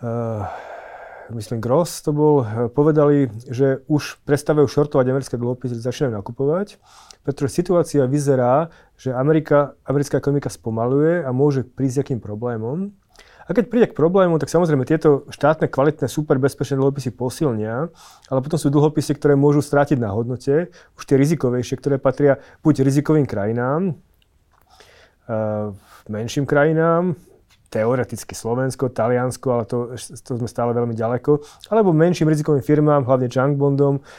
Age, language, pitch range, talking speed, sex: 30-49, Slovak, 120-150 Hz, 135 wpm, male